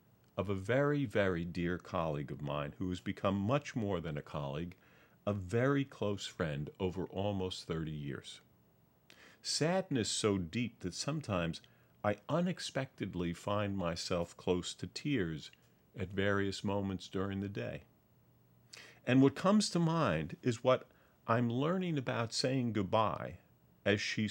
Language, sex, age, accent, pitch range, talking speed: English, male, 50-69, American, 95-125 Hz, 140 wpm